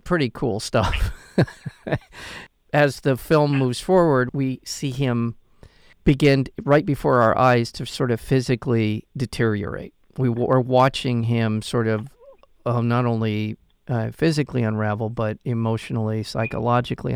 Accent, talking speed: American, 125 wpm